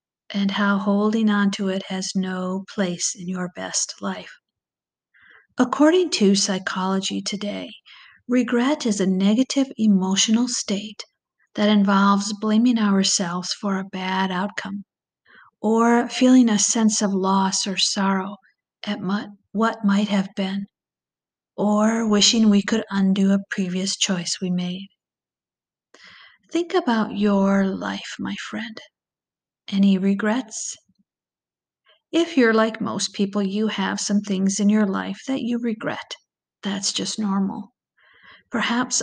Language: English